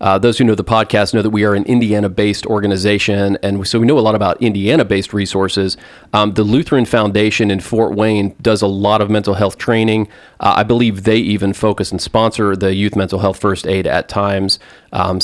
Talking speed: 210 wpm